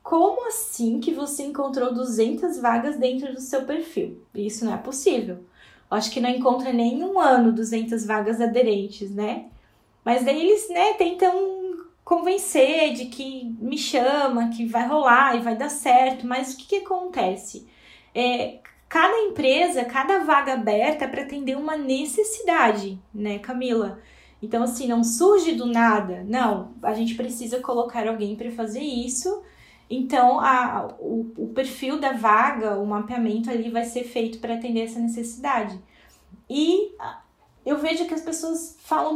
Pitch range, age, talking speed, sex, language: 230-300 Hz, 10-29, 150 wpm, female, Portuguese